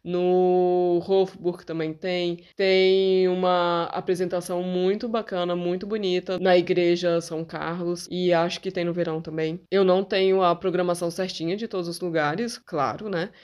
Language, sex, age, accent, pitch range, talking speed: Portuguese, female, 20-39, Brazilian, 170-210 Hz, 150 wpm